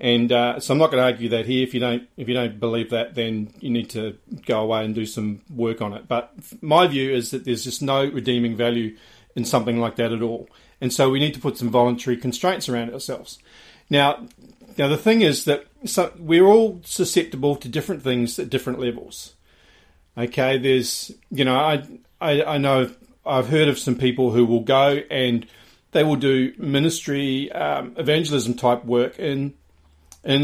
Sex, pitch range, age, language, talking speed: male, 120-140 Hz, 40-59, English, 195 wpm